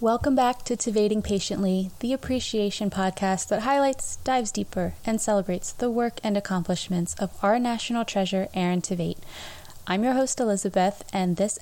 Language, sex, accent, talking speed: English, female, American, 155 wpm